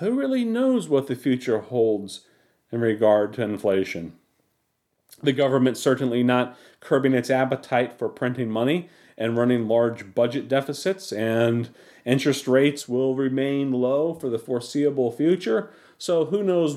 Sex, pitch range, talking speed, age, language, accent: male, 115-150 Hz, 140 wpm, 40-59, English, American